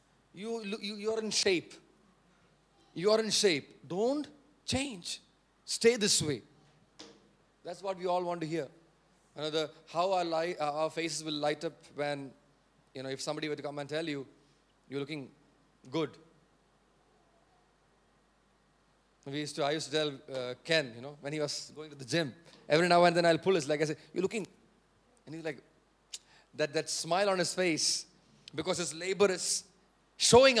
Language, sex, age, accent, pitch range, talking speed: English, male, 30-49, Indian, 150-195 Hz, 175 wpm